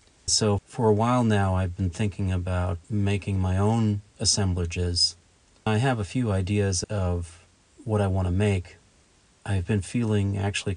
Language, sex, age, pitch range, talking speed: English, male, 40-59, 95-110 Hz, 160 wpm